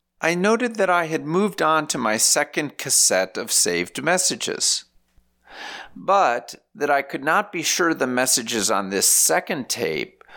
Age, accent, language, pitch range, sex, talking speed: 50-69, American, English, 100-160 Hz, male, 155 wpm